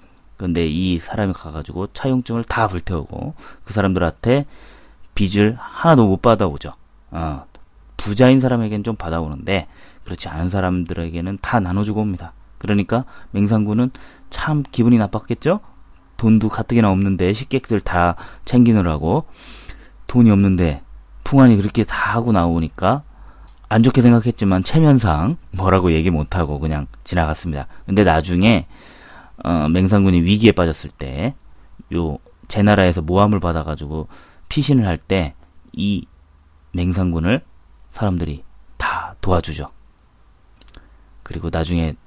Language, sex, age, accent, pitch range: Korean, male, 30-49, native, 80-110 Hz